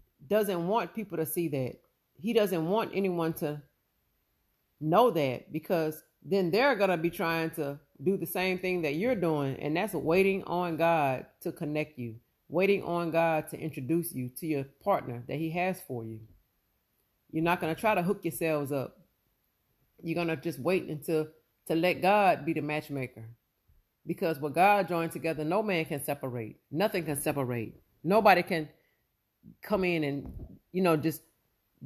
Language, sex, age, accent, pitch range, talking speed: English, female, 40-59, American, 140-190 Hz, 170 wpm